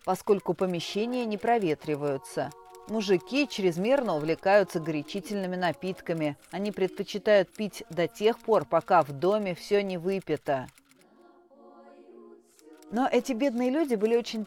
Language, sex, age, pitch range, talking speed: Russian, female, 40-59, 170-220 Hz, 110 wpm